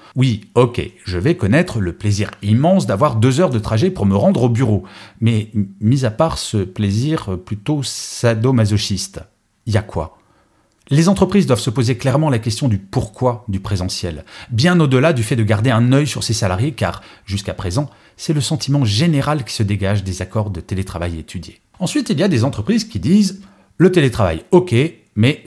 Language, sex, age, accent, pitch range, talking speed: French, male, 40-59, French, 105-145 Hz, 190 wpm